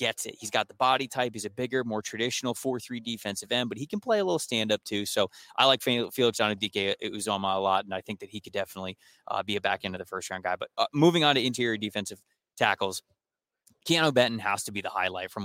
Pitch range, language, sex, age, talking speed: 105-125 Hz, English, male, 20-39, 265 wpm